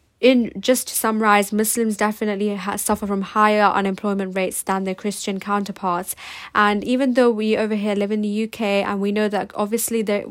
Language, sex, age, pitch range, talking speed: English, female, 10-29, 200-225 Hz, 180 wpm